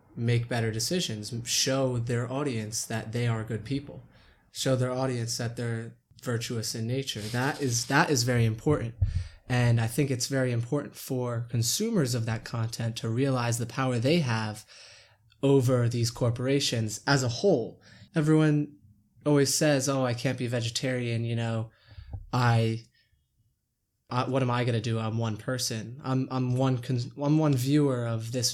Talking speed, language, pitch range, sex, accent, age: 160 wpm, English, 115-135 Hz, male, American, 20-39